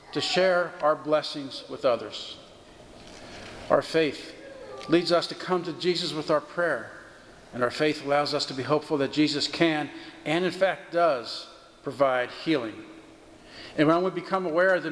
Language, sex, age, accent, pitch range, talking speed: English, male, 50-69, American, 140-175 Hz, 165 wpm